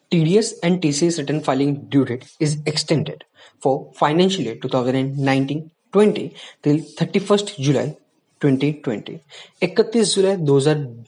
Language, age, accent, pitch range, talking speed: Hindi, 20-39, native, 140-185 Hz, 55 wpm